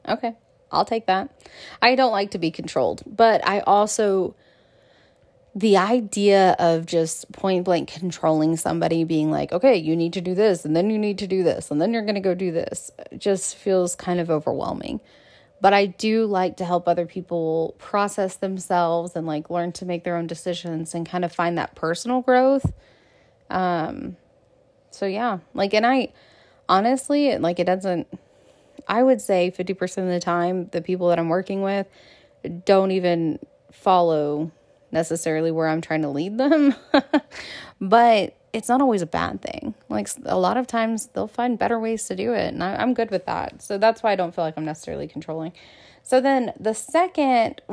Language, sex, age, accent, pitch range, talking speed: English, female, 20-39, American, 170-225 Hz, 180 wpm